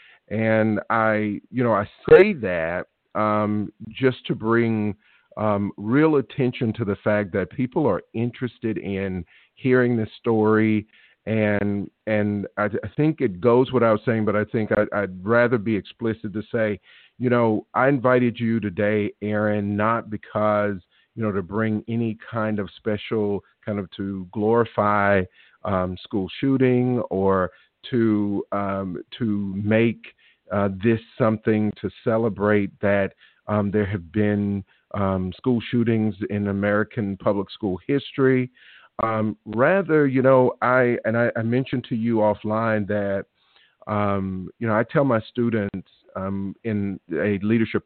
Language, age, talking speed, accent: English, 50-69, 145 wpm, American